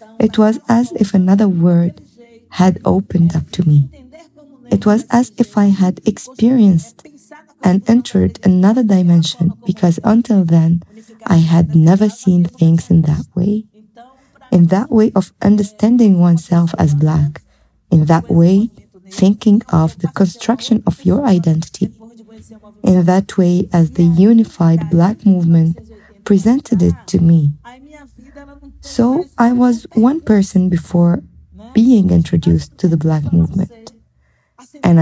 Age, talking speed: 20-39, 130 wpm